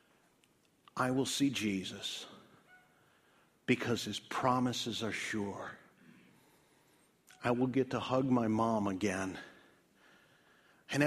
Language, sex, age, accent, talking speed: English, male, 50-69, American, 100 wpm